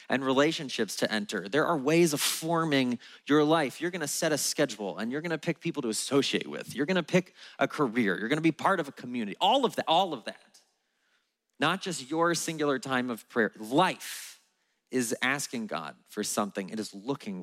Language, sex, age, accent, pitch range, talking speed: English, male, 30-49, American, 110-165 Hz, 215 wpm